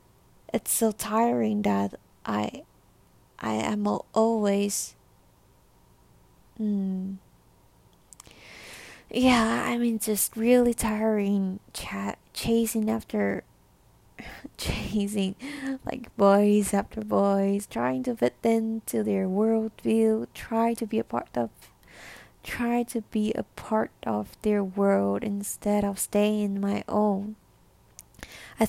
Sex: female